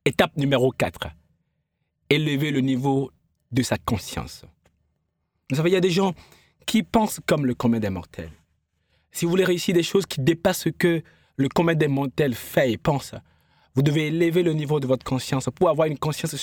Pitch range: 120-200 Hz